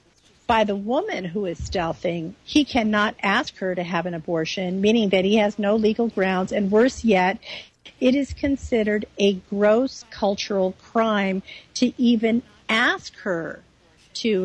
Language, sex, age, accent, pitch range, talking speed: English, female, 50-69, American, 185-250 Hz, 150 wpm